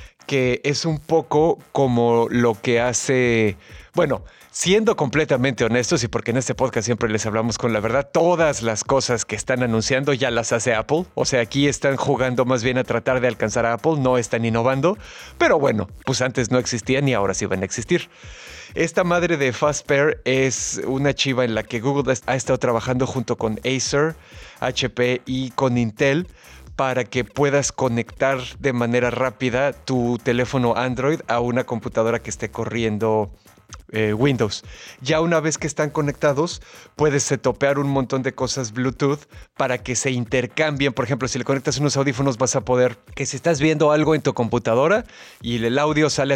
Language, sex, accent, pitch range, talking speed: Spanish, male, Mexican, 120-140 Hz, 180 wpm